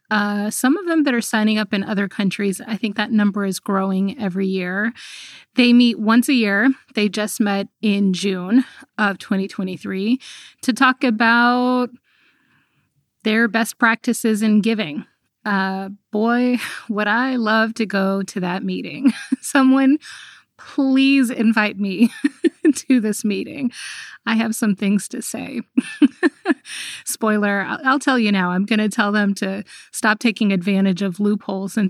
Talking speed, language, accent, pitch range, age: 150 wpm, English, American, 200-250 Hz, 30-49